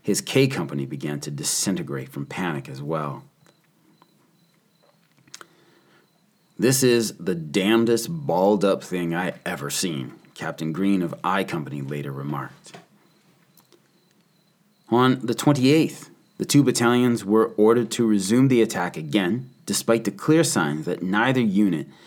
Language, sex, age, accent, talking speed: English, male, 30-49, American, 125 wpm